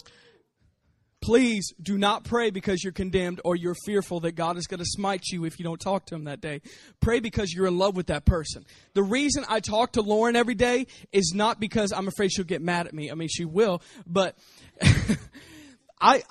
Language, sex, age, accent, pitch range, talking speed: English, male, 20-39, American, 180-220 Hz, 210 wpm